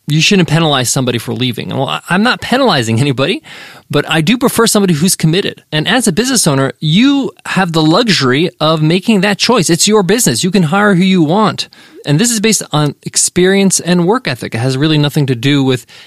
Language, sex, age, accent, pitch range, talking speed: English, male, 20-39, American, 135-185 Hz, 210 wpm